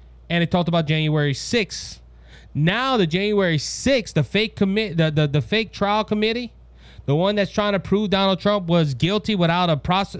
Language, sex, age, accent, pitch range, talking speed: English, male, 20-39, American, 125-185 Hz, 190 wpm